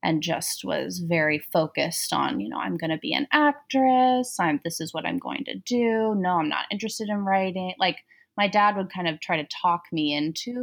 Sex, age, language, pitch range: female, 20-39, English, 160-220 Hz